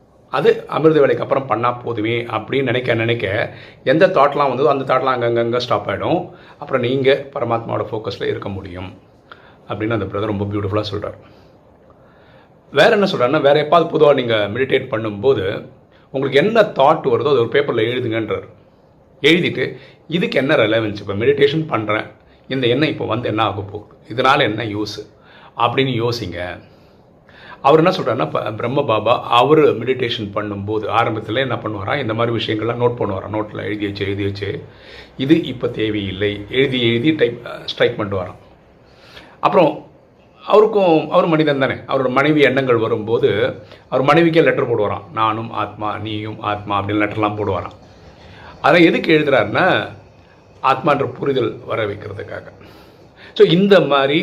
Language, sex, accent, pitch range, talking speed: Tamil, male, native, 105-145 Hz, 135 wpm